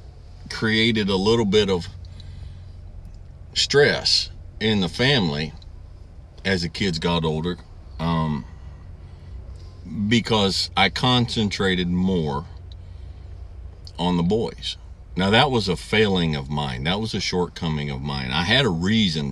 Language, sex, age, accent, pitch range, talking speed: English, male, 50-69, American, 75-95 Hz, 120 wpm